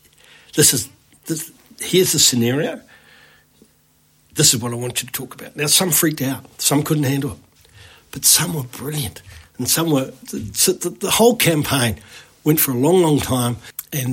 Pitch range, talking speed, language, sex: 120-150 Hz, 180 wpm, English, male